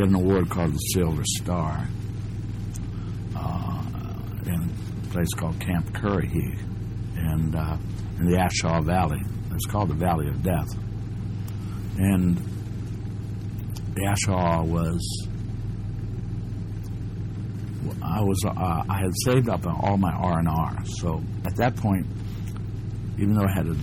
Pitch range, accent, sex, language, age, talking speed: 90-105 Hz, American, male, English, 60-79, 120 wpm